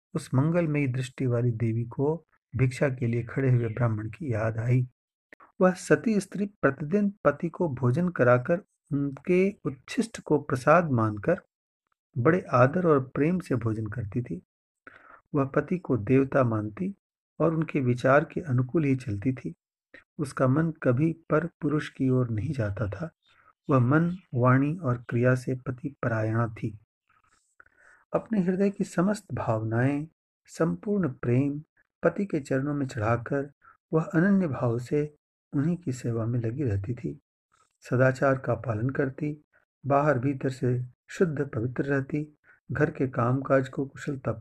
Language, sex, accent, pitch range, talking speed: Hindi, male, native, 125-155 Hz, 145 wpm